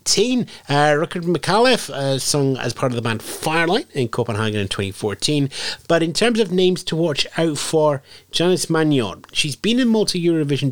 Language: English